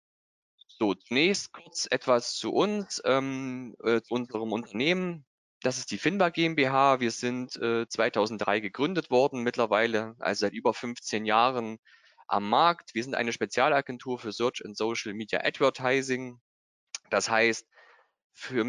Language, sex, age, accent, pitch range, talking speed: German, male, 20-39, German, 110-130 Hz, 135 wpm